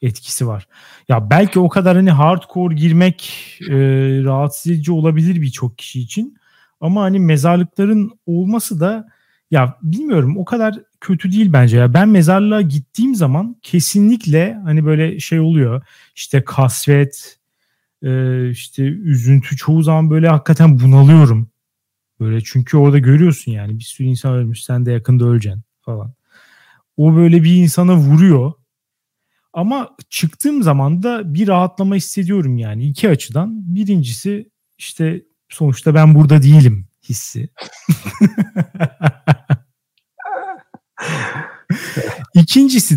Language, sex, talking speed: Turkish, male, 120 wpm